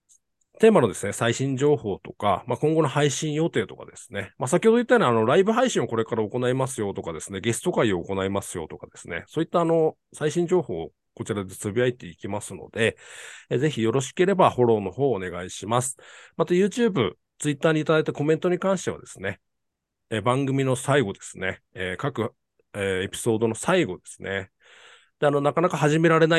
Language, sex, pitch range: Japanese, male, 100-160 Hz